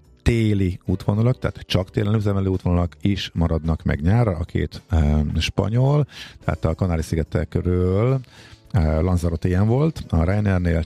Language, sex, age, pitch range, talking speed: Hungarian, male, 50-69, 80-105 Hz, 140 wpm